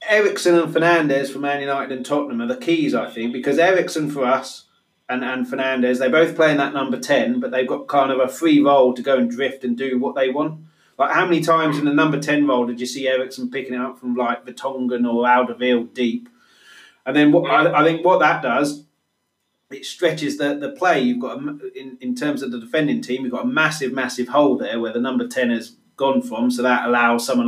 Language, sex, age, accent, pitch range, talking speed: English, male, 30-49, British, 125-150 Hz, 235 wpm